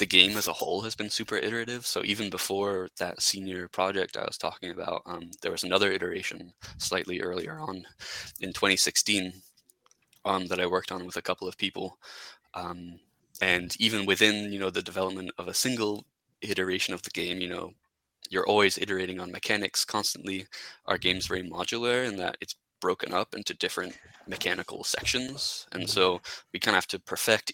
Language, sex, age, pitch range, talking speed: English, male, 20-39, 90-105 Hz, 180 wpm